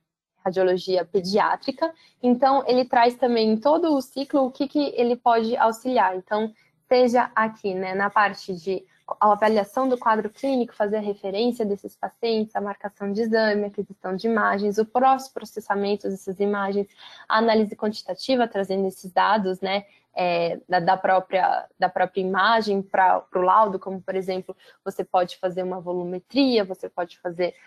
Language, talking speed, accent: Portuguese, 150 wpm, Brazilian